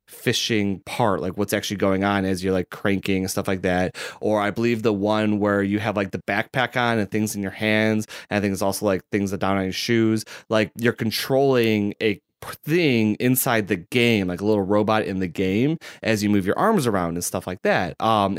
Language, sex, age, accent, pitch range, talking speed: English, male, 30-49, American, 100-125 Hz, 230 wpm